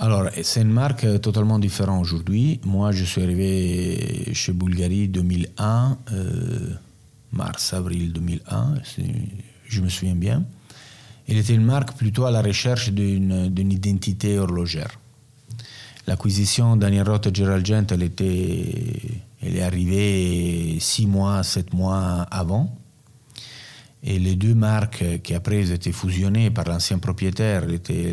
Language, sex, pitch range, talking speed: French, male, 90-115 Hz, 130 wpm